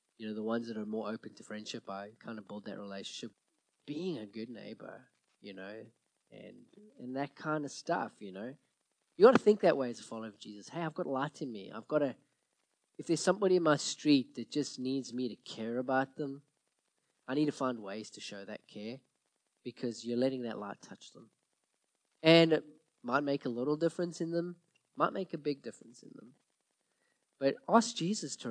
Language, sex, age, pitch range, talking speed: English, male, 20-39, 115-150 Hz, 210 wpm